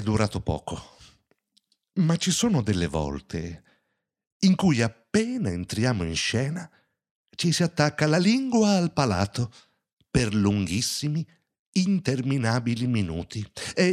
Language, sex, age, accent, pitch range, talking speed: Italian, male, 60-79, native, 105-160 Hz, 110 wpm